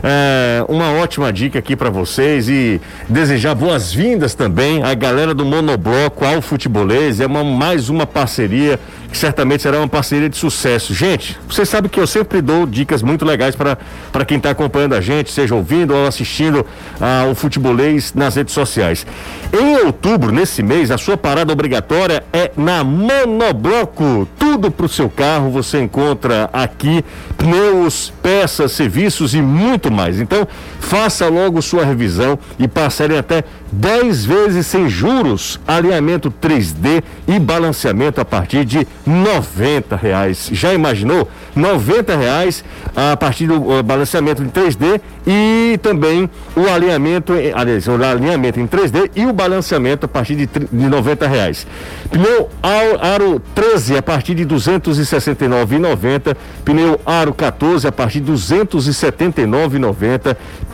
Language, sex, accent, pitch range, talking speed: Portuguese, male, Brazilian, 130-165 Hz, 140 wpm